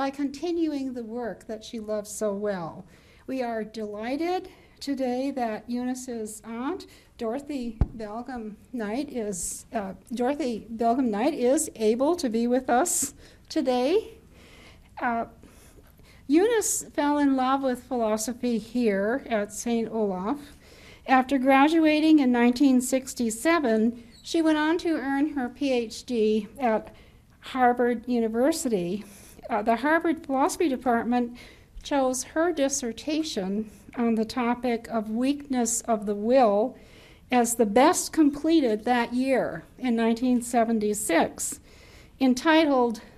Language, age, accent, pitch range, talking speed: English, 60-79, American, 225-280 Hz, 115 wpm